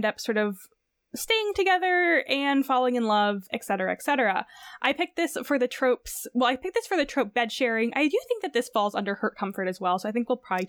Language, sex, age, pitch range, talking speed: English, female, 10-29, 220-300 Hz, 235 wpm